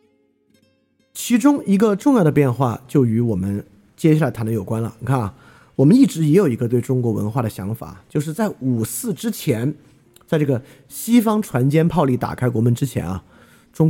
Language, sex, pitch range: Chinese, male, 115-155 Hz